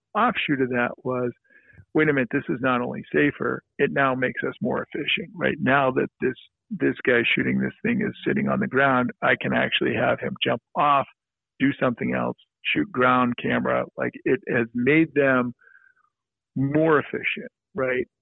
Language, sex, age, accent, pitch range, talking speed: English, male, 50-69, American, 125-145 Hz, 175 wpm